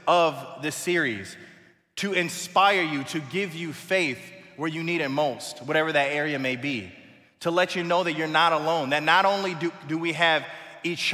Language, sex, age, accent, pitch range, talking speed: English, male, 20-39, American, 140-175 Hz, 195 wpm